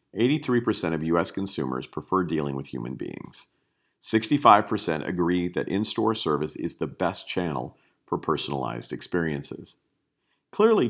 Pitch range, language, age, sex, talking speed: 80-110 Hz, English, 50-69, male, 115 wpm